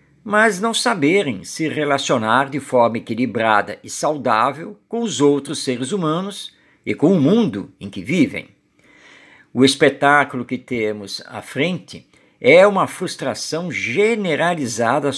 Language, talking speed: Portuguese, 125 wpm